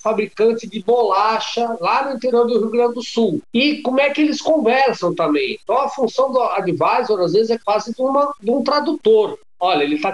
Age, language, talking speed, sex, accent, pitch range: 50-69, Portuguese, 205 wpm, male, Brazilian, 180-250 Hz